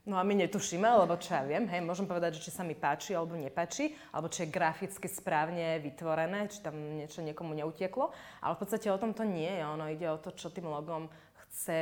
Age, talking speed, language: 20-39, 225 wpm, Slovak